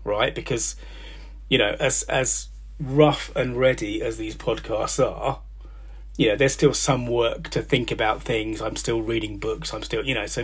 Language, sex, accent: English, male, British